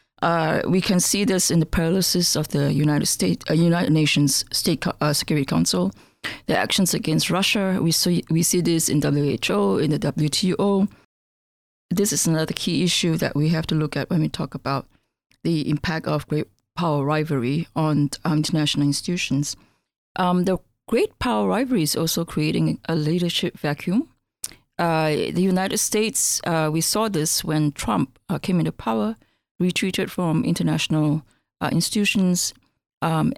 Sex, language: female, English